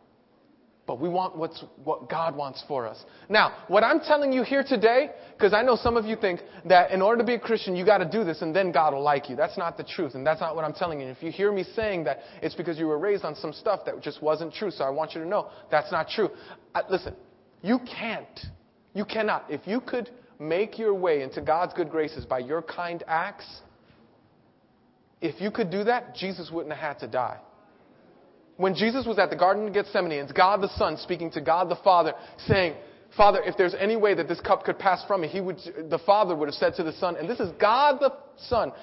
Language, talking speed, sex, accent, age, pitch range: English, 245 wpm, male, American, 30-49, 165-230 Hz